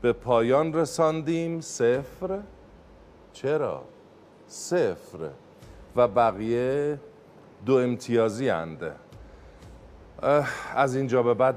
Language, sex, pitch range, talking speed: Persian, male, 105-145 Hz, 80 wpm